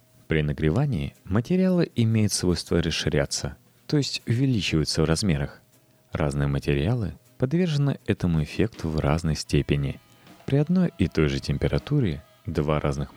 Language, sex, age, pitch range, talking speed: Russian, male, 30-49, 75-120 Hz, 125 wpm